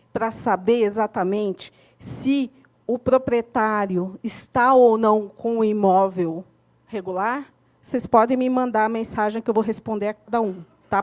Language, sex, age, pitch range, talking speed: Portuguese, female, 40-59, 200-280 Hz, 145 wpm